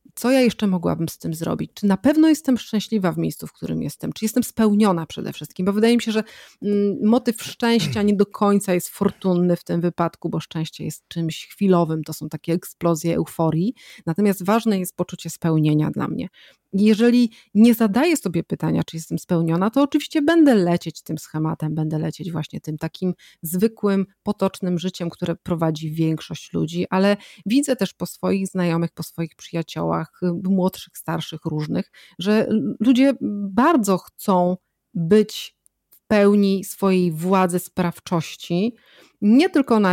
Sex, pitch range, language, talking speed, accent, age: female, 170-220 Hz, Polish, 155 wpm, native, 30-49